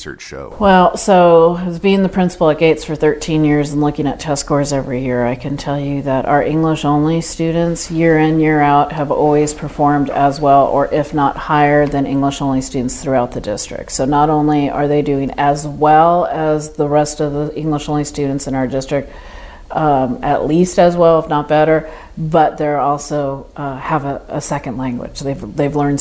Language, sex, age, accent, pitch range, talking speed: English, female, 40-59, American, 135-155 Hz, 190 wpm